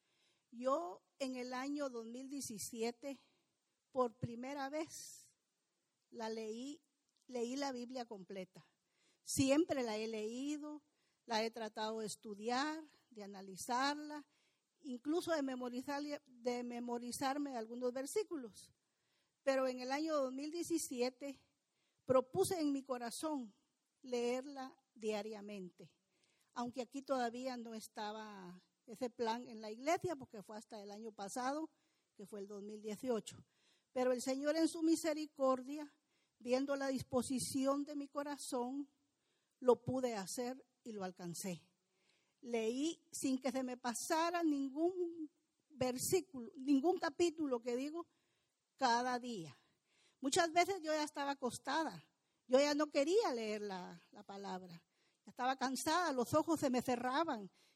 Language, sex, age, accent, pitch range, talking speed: English, female, 50-69, American, 225-290 Hz, 120 wpm